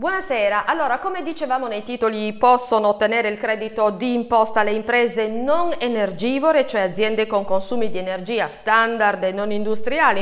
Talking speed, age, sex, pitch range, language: 155 wpm, 40-59, female, 195-265 Hz, Italian